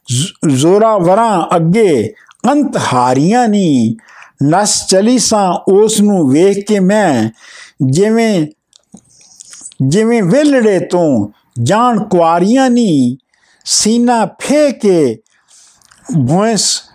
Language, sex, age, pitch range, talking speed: Punjabi, male, 60-79, 165-225 Hz, 80 wpm